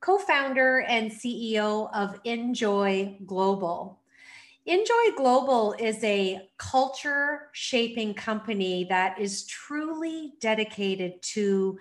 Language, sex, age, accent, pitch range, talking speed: English, female, 40-59, American, 195-265 Hz, 90 wpm